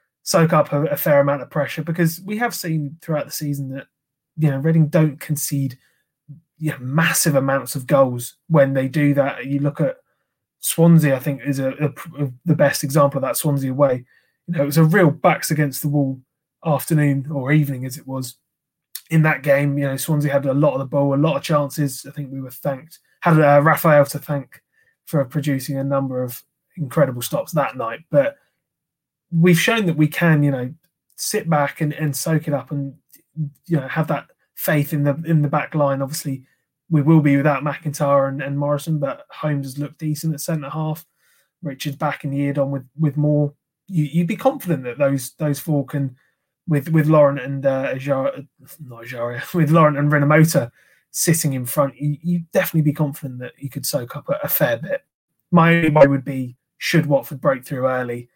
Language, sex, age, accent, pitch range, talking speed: English, male, 20-39, British, 140-160 Hz, 205 wpm